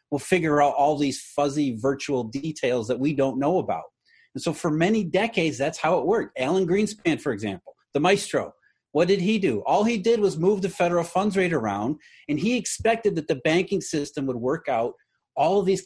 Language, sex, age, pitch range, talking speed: English, male, 30-49, 135-190 Hz, 210 wpm